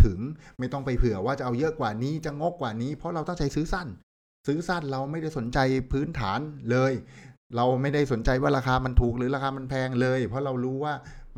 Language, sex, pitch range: Thai, male, 105-135 Hz